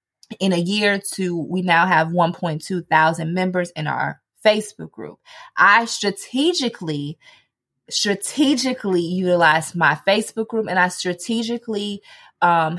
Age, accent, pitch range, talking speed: 20-39, American, 180-265 Hz, 115 wpm